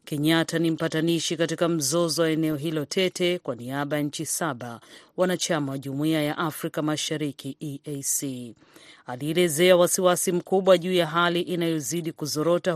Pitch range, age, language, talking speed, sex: 145-180 Hz, 40-59, Swahili, 130 wpm, female